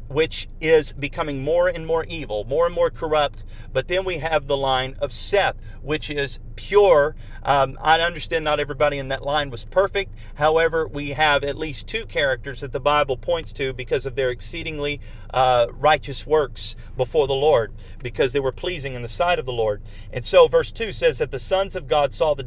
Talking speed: 205 wpm